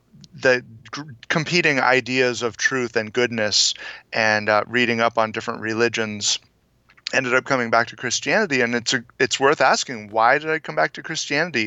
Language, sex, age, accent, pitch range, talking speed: English, male, 30-49, American, 110-135 Hz, 170 wpm